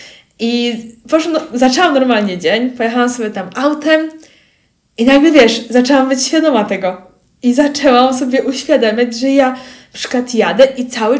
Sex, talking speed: female, 150 wpm